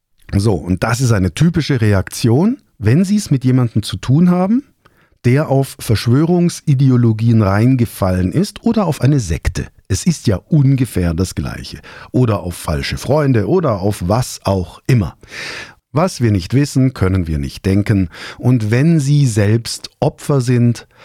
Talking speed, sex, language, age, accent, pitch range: 150 wpm, male, German, 50-69, German, 100-135 Hz